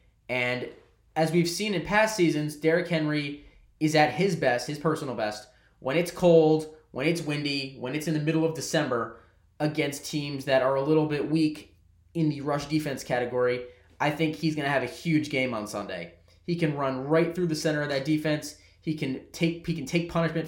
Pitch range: 125-155 Hz